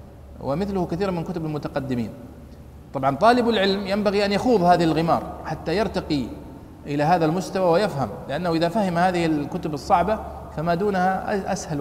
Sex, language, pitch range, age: male, Arabic, 150-205 Hz, 40-59